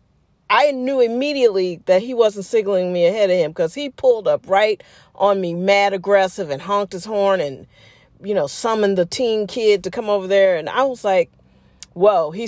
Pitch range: 180-250 Hz